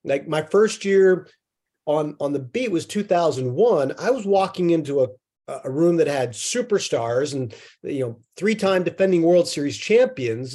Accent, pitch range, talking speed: American, 145-195 Hz, 160 wpm